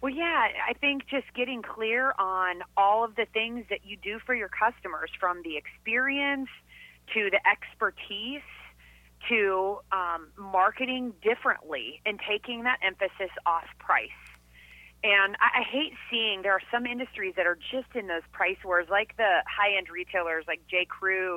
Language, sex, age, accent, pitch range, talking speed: English, female, 30-49, American, 175-220 Hz, 160 wpm